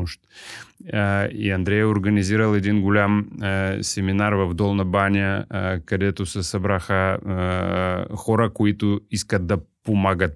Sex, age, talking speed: male, 30-49, 105 wpm